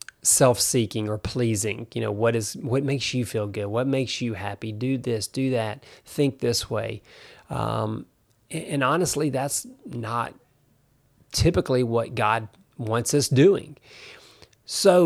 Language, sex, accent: English, male, American